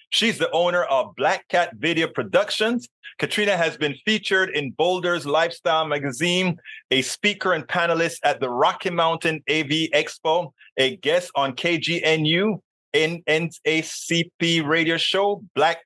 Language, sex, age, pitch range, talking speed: English, male, 30-49, 145-195 Hz, 130 wpm